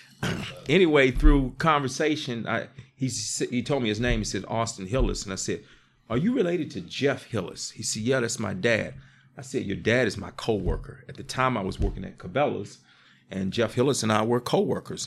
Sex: male